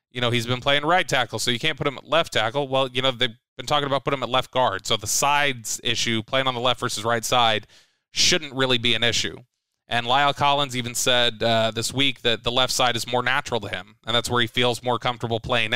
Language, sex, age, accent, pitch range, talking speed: English, male, 20-39, American, 110-135 Hz, 260 wpm